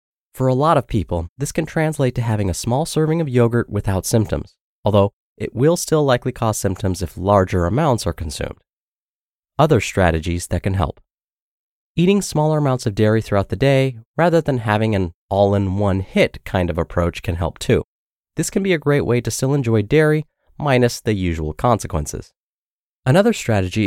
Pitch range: 90-135 Hz